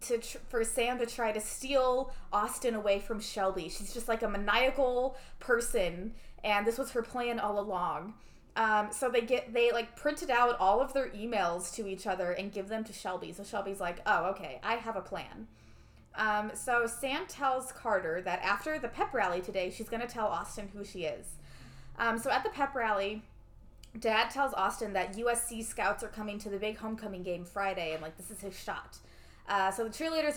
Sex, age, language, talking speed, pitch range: female, 20-39, English, 200 wpm, 210-275 Hz